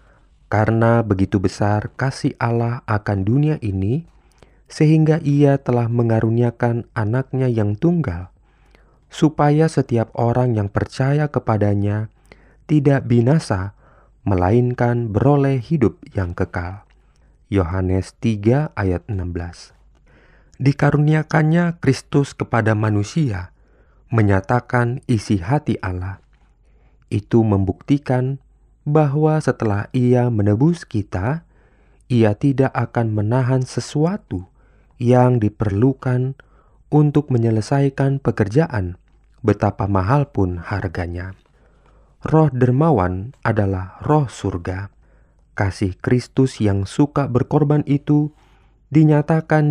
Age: 30-49